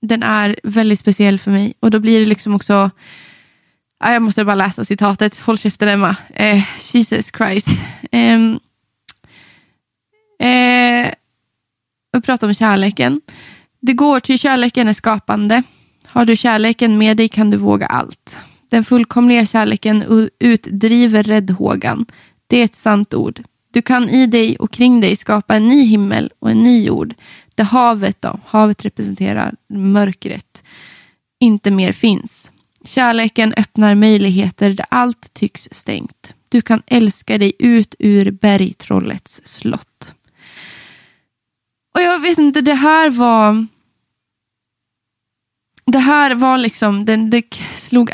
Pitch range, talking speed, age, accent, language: 200-235 Hz, 135 wpm, 20-39, native, Swedish